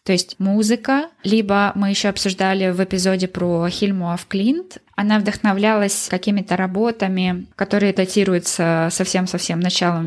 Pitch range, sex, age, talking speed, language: 180-215 Hz, female, 20-39, 120 wpm, Russian